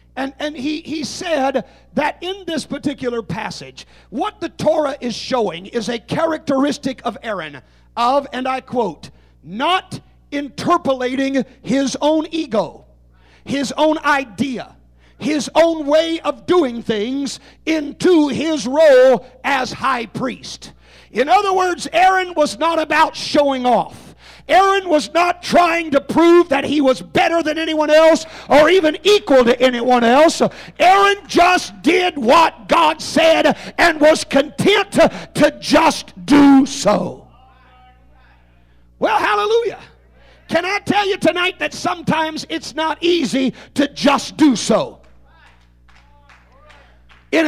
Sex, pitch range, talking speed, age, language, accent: male, 240-320 Hz, 130 wpm, 50-69, English, American